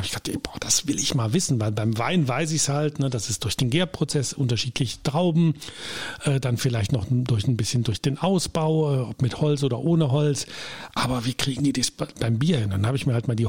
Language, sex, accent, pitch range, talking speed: German, male, German, 120-150 Hz, 240 wpm